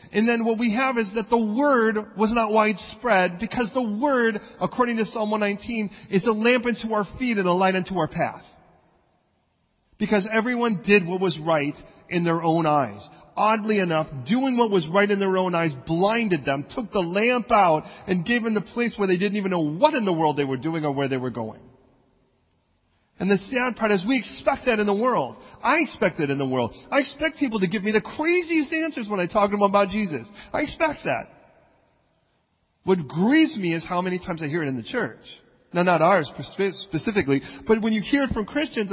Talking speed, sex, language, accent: 215 wpm, male, English, American